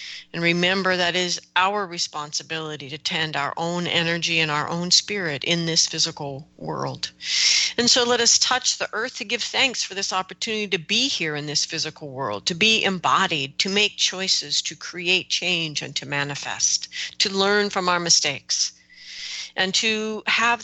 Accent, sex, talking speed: American, female, 170 wpm